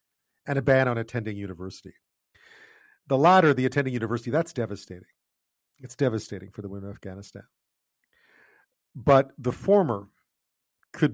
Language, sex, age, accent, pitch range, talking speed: English, male, 50-69, American, 110-160 Hz, 130 wpm